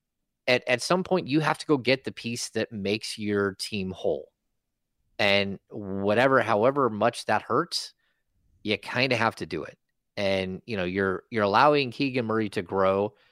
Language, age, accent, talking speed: English, 30-49, American, 175 wpm